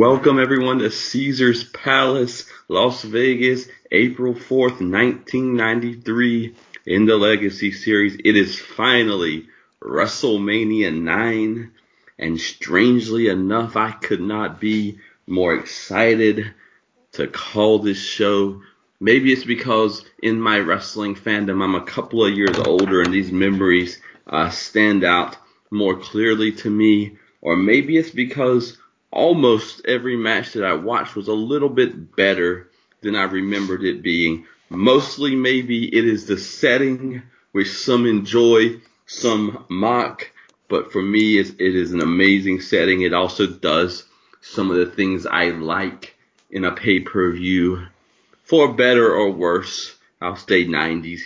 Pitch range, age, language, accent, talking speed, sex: 95-120 Hz, 30-49, English, American, 130 wpm, male